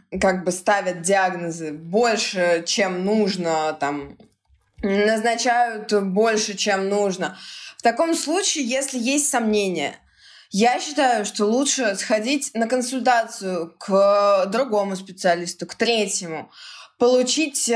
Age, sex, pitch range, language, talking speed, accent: 20-39, female, 190-245 Hz, Russian, 100 wpm, native